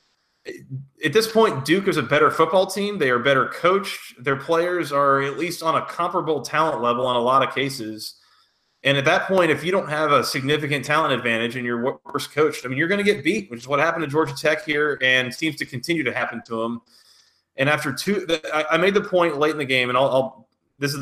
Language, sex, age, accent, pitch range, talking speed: English, male, 30-49, American, 120-160 Hz, 235 wpm